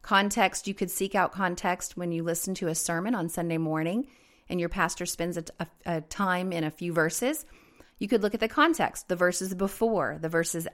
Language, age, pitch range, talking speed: English, 30-49, 165-205 Hz, 205 wpm